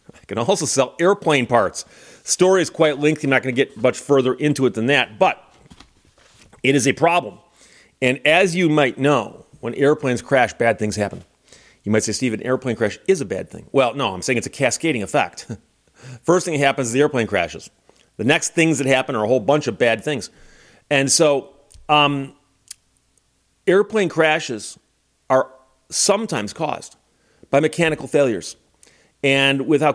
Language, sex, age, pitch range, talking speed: English, male, 40-59, 120-155 Hz, 180 wpm